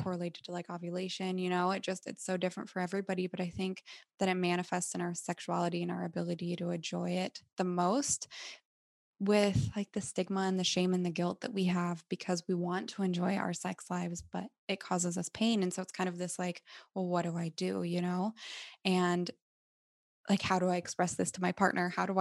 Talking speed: 220 wpm